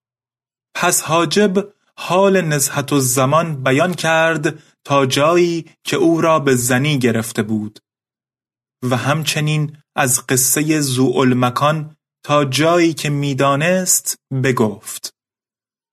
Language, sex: Persian, male